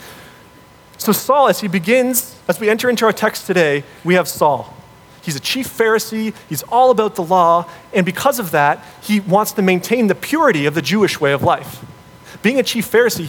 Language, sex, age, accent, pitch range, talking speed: English, male, 30-49, American, 155-220 Hz, 200 wpm